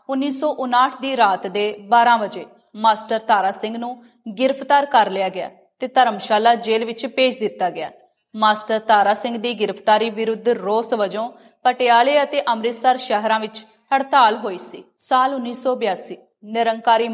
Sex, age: female, 30-49